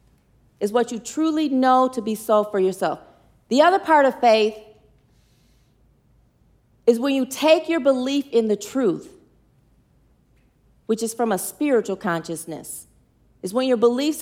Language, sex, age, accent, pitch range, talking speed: English, female, 40-59, American, 200-275 Hz, 145 wpm